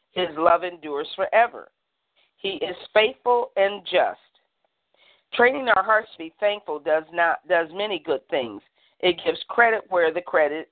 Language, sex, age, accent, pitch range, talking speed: English, female, 50-69, American, 160-215 Hz, 150 wpm